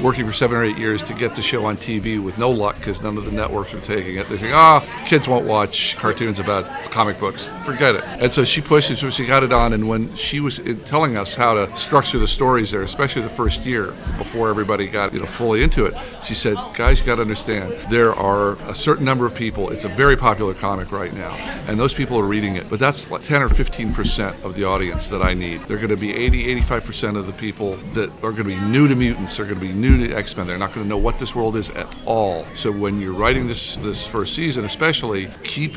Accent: American